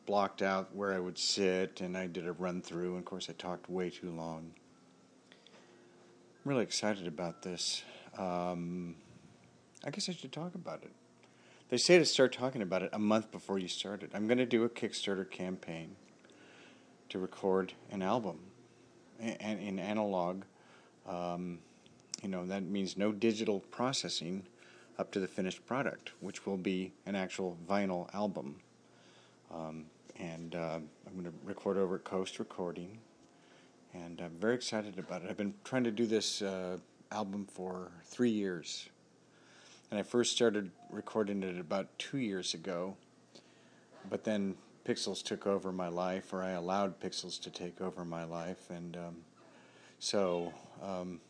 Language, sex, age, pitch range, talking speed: English, male, 40-59, 90-105 Hz, 160 wpm